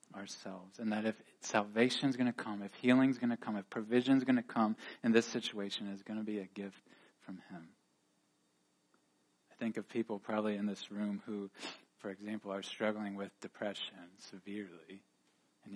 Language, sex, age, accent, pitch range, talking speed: English, male, 20-39, American, 100-115 Hz, 185 wpm